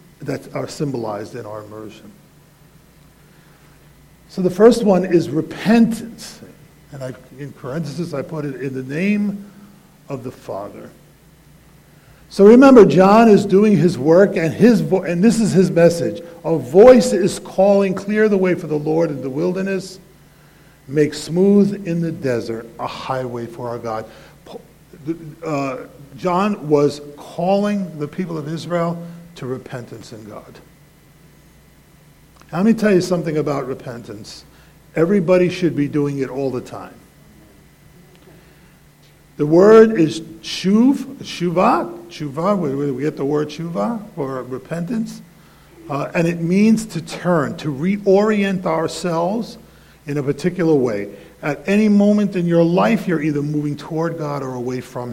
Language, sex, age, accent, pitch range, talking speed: English, male, 50-69, American, 140-185 Hz, 140 wpm